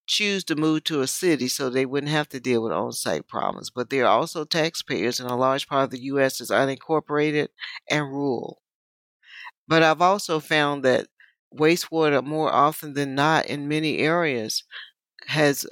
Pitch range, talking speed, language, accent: 130-150 Hz, 170 wpm, English, American